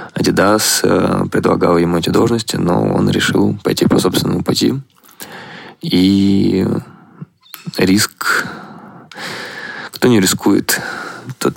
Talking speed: 95 wpm